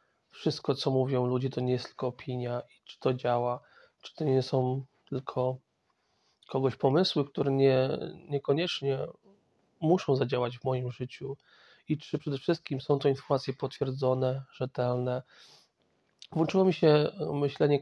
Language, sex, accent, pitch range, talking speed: Polish, male, native, 130-145 Hz, 140 wpm